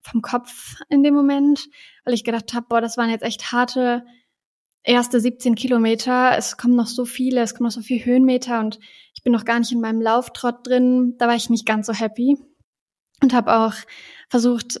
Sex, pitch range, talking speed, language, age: female, 220-245 Hz, 205 wpm, German, 20-39